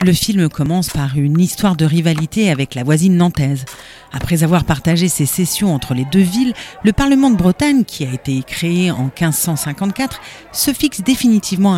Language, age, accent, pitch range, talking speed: French, 40-59, French, 150-205 Hz, 175 wpm